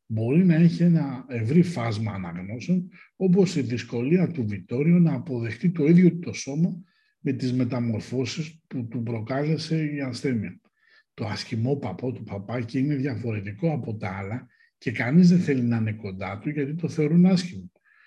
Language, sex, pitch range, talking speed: Greek, male, 115-170 Hz, 160 wpm